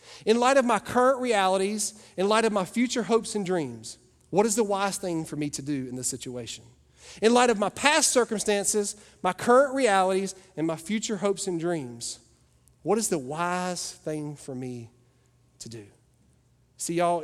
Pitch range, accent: 140-190 Hz, American